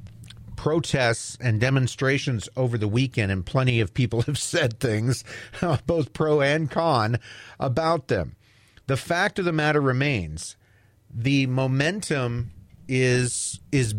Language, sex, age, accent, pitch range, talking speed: English, male, 40-59, American, 115-155 Hz, 125 wpm